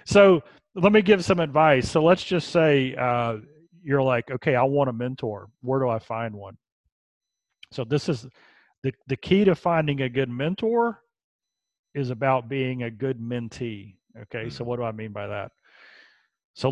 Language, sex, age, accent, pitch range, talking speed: Croatian, male, 40-59, American, 120-155 Hz, 175 wpm